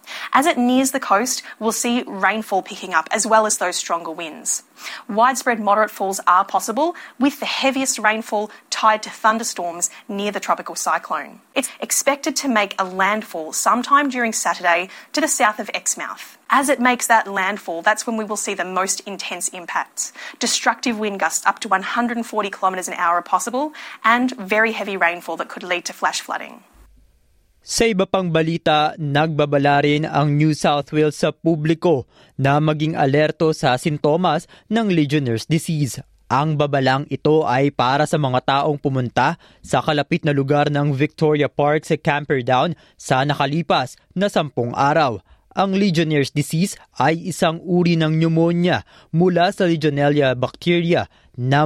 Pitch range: 150-215 Hz